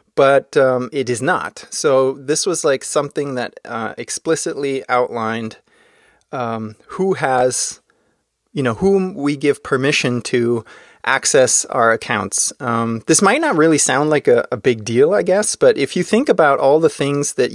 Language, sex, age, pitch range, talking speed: English, male, 30-49, 115-150 Hz, 170 wpm